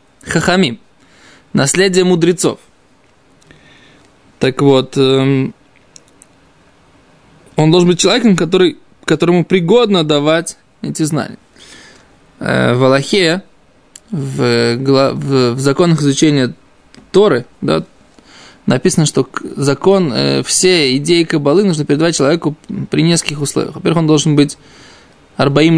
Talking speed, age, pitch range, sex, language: 95 wpm, 20-39, 140-180 Hz, male, Russian